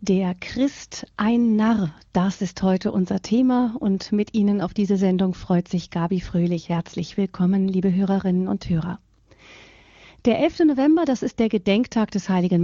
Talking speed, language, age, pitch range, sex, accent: 160 wpm, German, 40-59, 175-215 Hz, female, German